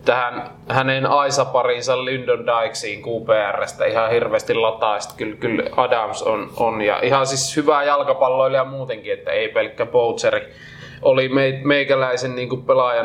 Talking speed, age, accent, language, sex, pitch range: 130 wpm, 20-39, native, Finnish, male, 110-150 Hz